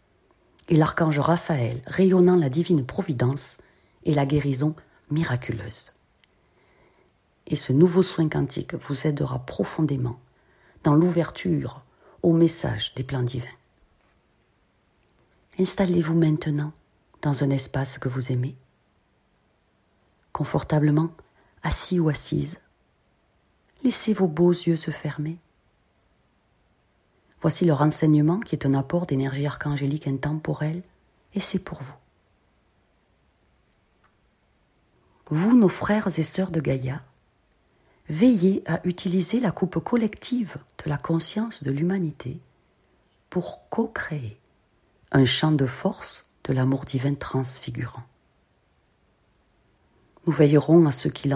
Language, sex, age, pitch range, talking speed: French, female, 40-59, 130-170 Hz, 105 wpm